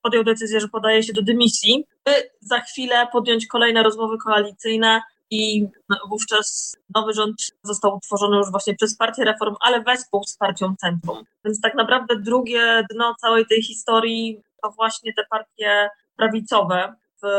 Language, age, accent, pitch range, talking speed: Polish, 20-39, native, 210-230 Hz, 150 wpm